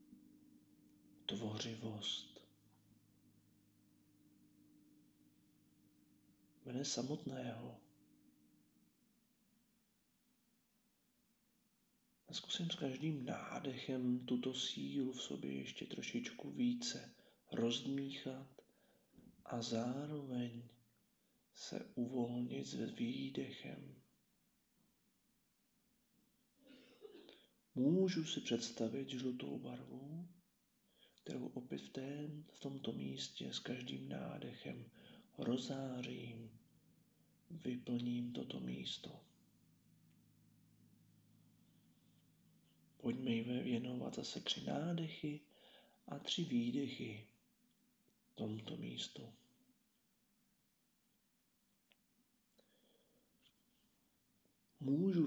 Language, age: Czech, 40-59